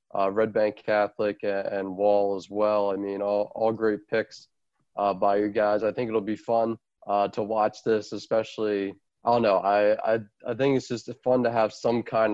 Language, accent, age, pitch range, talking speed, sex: English, American, 20-39, 105-115 Hz, 210 wpm, male